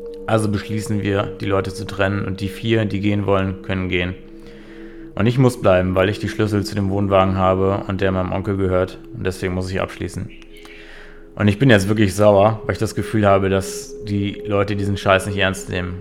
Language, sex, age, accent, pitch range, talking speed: German, male, 20-39, German, 95-105 Hz, 210 wpm